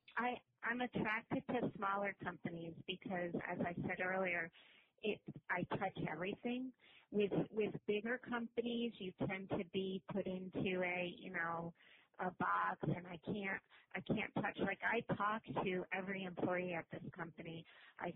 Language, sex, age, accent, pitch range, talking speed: English, female, 40-59, American, 175-200 Hz, 145 wpm